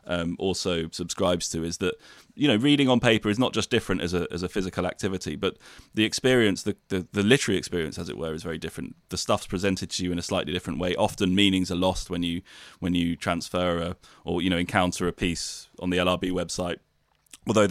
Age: 20-39